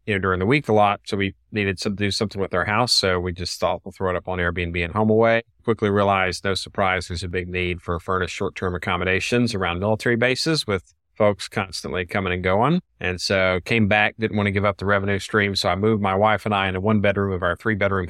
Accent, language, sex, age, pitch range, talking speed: American, English, male, 30-49, 95-110 Hz, 245 wpm